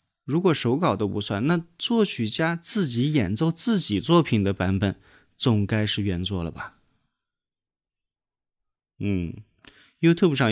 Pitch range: 105-150 Hz